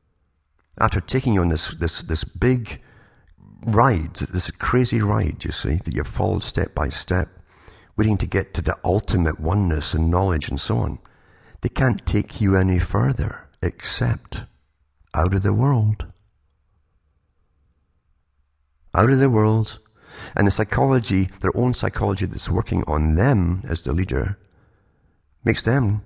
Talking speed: 145 wpm